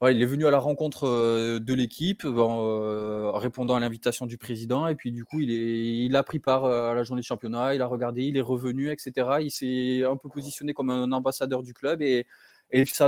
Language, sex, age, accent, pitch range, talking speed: French, male, 20-39, French, 115-135 Hz, 250 wpm